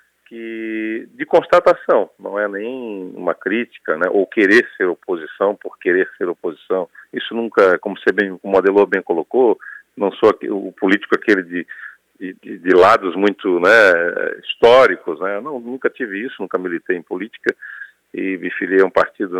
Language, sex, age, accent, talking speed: Portuguese, male, 50-69, Brazilian, 165 wpm